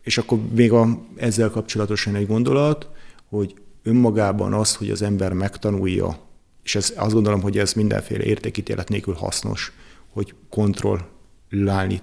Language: Hungarian